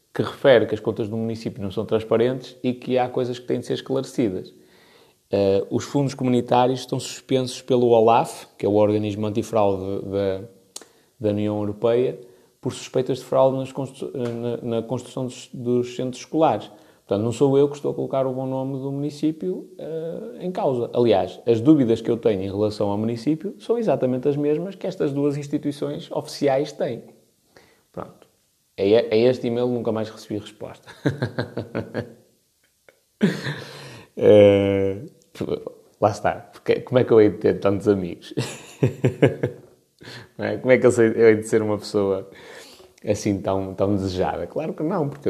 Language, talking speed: Portuguese, 160 wpm